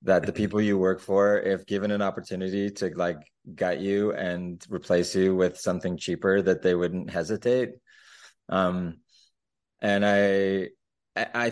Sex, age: male, 20-39